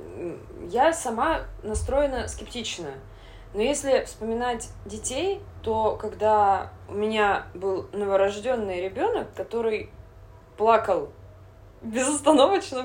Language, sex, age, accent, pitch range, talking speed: Russian, female, 20-39, native, 160-260 Hz, 85 wpm